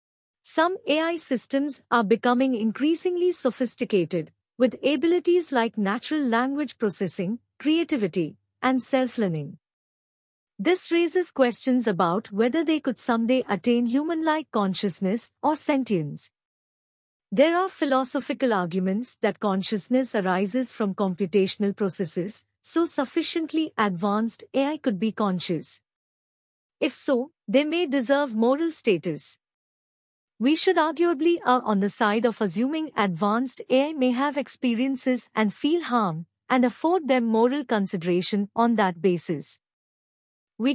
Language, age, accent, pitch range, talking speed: English, 50-69, Indian, 205-290 Hz, 120 wpm